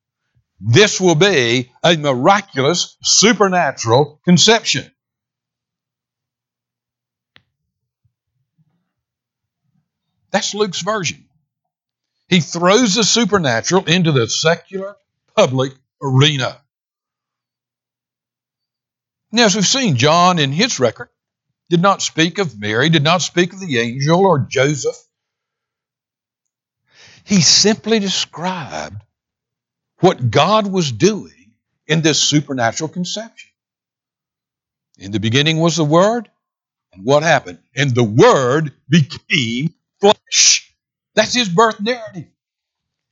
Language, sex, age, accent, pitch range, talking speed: English, male, 60-79, American, 120-185 Hz, 95 wpm